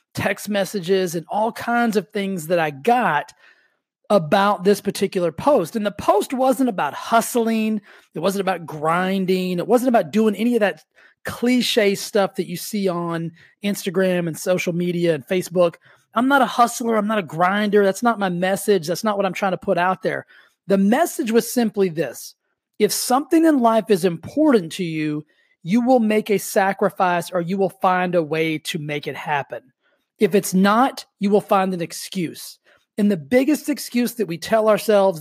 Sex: male